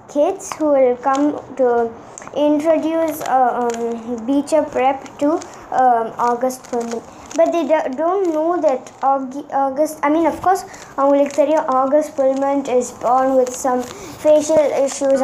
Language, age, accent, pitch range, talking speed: Tamil, 20-39, native, 250-305 Hz, 145 wpm